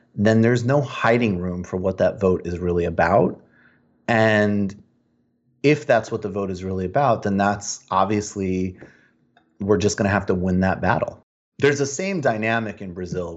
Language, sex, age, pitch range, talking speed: English, male, 30-49, 95-115 Hz, 175 wpm